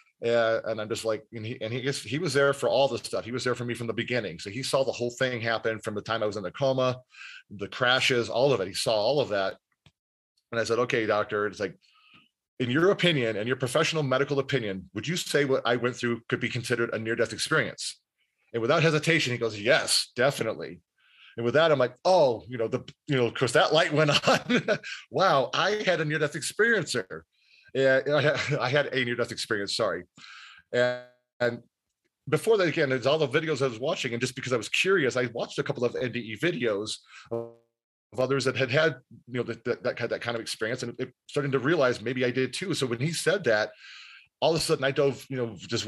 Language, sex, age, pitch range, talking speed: English, male, 30-49, 115-145 Hz, 220 wpm